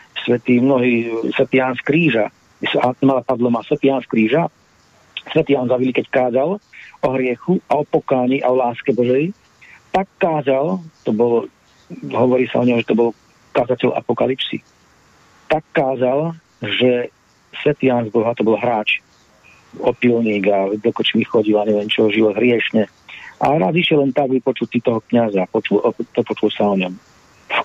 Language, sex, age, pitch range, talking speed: Slovak, male, 40-59, 115-145 Hz, 155 wpm